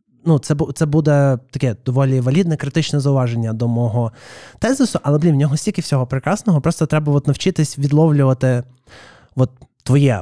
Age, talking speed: 20-39, 155 wpm